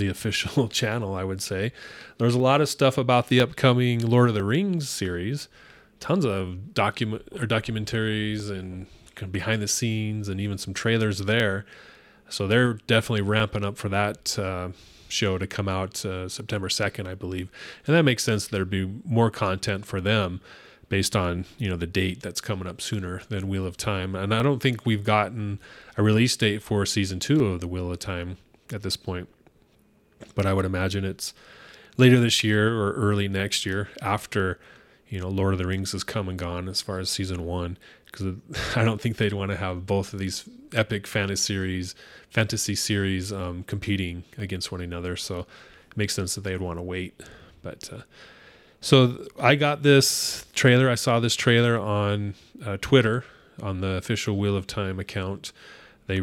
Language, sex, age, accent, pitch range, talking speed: English, male, 30-49, American, 95-115 Hz, 190 wpm